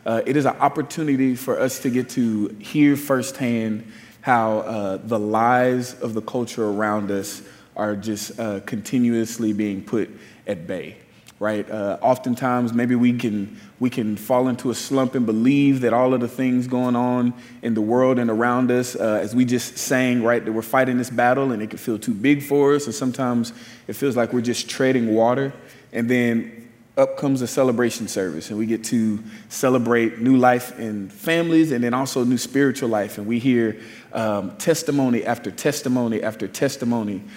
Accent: American